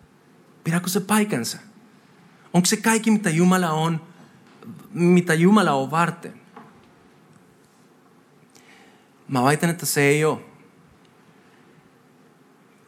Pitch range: 125-180 Hz